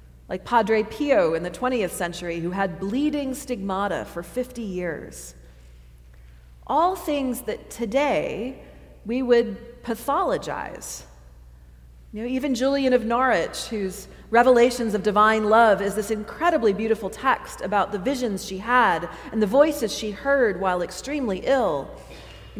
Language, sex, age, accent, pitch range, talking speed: English, female, 40-59, American, 175-255 Hz, 135 wpm